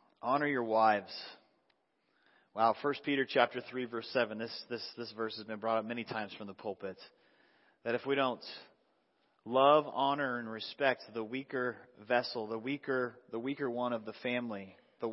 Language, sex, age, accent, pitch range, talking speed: English, male, 30-49, American, 115-145 Hz, 170 wpm